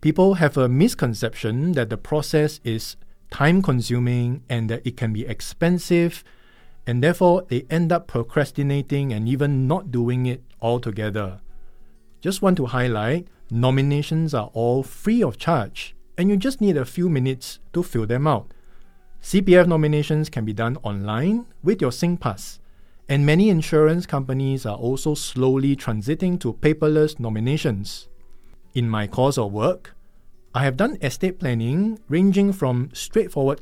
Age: 50-69